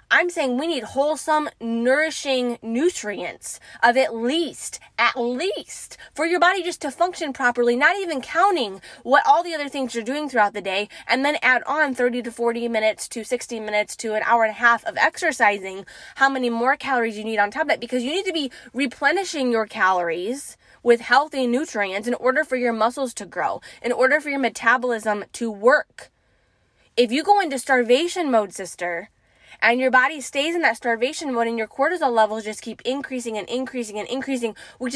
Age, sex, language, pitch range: 20-39, female, English, 225-280 Hz